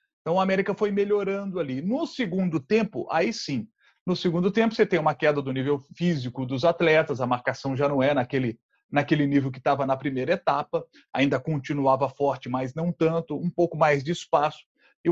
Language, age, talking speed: Portuguese, 40-59, 190 wpm